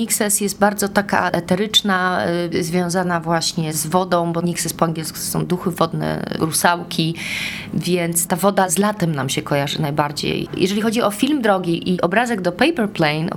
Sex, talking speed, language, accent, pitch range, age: female, 170 wpm, Polish, native, 175-215 Hz, 30-49